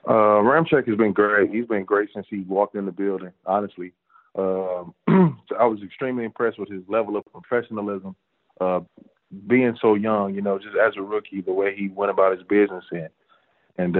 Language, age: English, 20-39